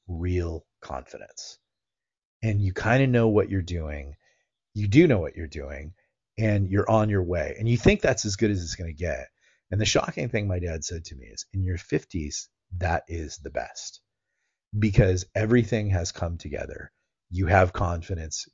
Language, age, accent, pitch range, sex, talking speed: English, 30-49, American, 90-110 Hz, male, 185 wpm